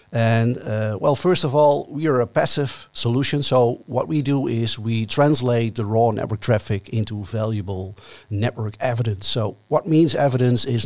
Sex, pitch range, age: male, 110-130 Hz, 50-69